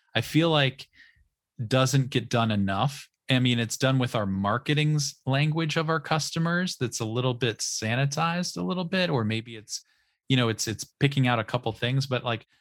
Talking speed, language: 190 wpm, English